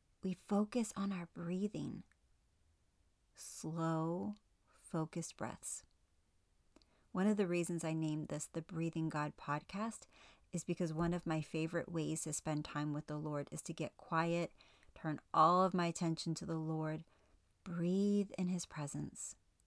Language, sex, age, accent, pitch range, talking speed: English, female, 30-49, American, 150-190 Hz, 145 wpm